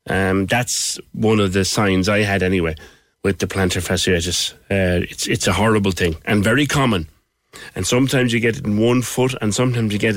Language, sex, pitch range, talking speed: English, male, 95-120 Hz, 200 wpm